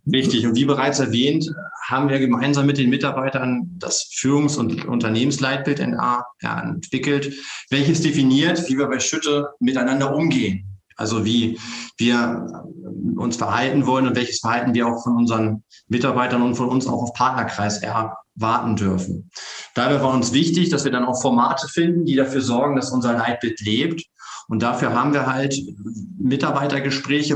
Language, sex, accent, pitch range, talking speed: German, male, German, 120-140 Hz, 155 wpm